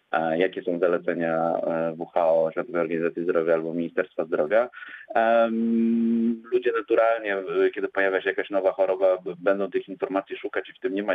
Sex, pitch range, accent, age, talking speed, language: male, 90-115 Hz, native, 30-49, 145 wpm, Polish